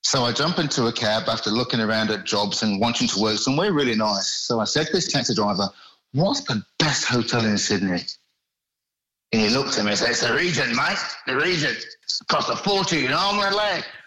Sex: male